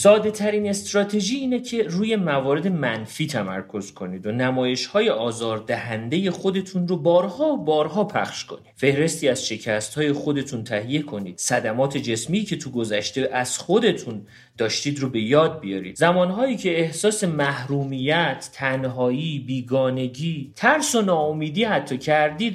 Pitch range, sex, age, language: 125-180 Hz, male, 40-59, Persian